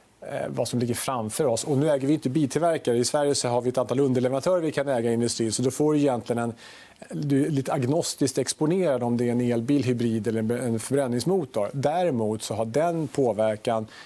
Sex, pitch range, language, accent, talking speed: male, 115-140 Hz, Swedish, Norwegian, 215 wpm